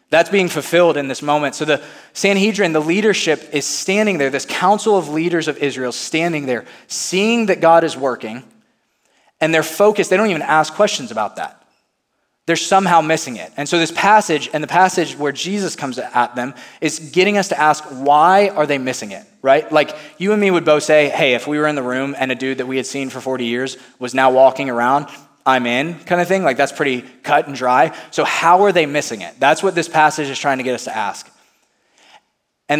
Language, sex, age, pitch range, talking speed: English, male, 20-39, 135-170 Hz, 220 wpm